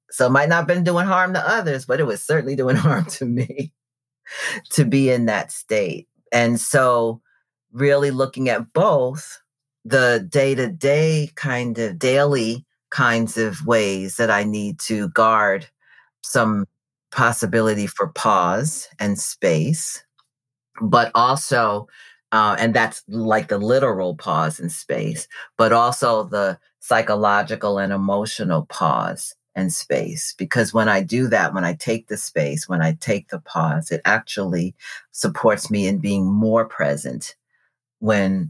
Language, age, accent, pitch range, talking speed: English, 40-59, American, 105-140 Hz, 145 wpm